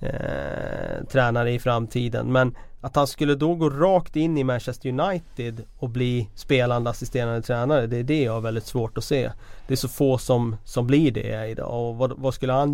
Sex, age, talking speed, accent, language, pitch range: male, 30-49, 205 wpm, native, Swedish, 115-135 Hz